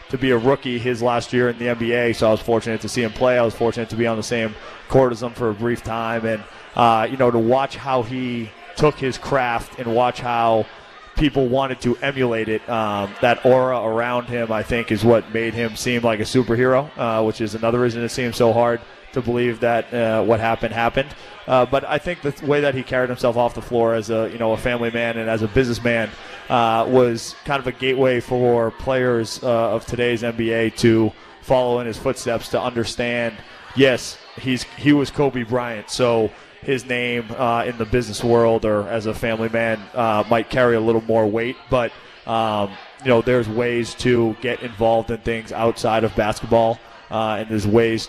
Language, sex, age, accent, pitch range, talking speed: English, male, 30-49, American, 115-125 Hz, 210 wpm